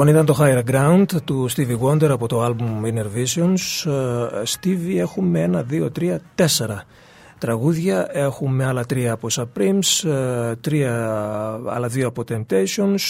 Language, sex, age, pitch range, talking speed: Greek, male, 40-59, 120-160 Hz, 135 wpm